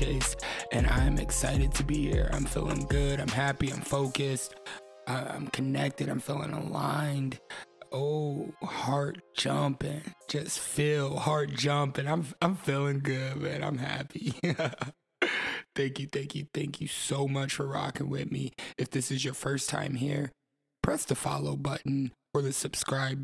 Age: 20-39